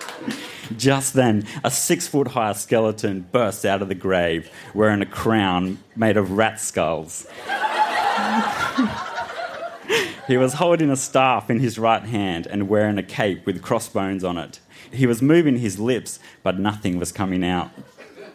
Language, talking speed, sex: English, 145 wpm, male